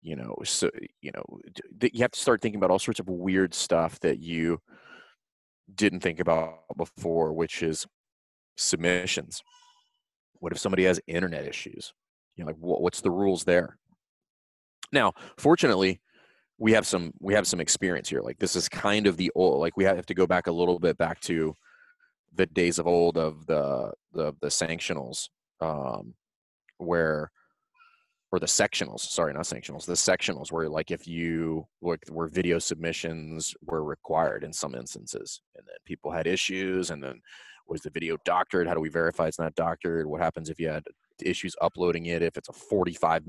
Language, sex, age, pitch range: English, male, 30-49, 80-95 Hz